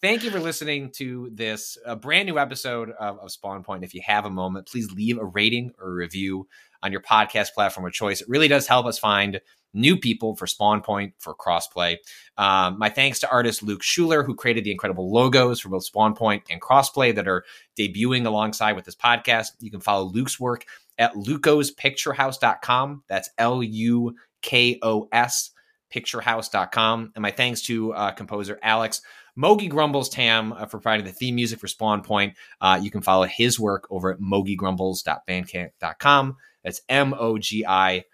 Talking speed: 170 wpm